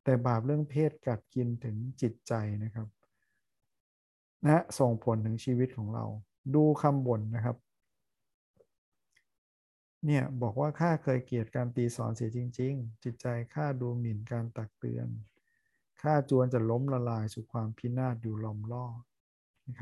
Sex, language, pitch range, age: male, Thai, 115-130 Hz, 60-79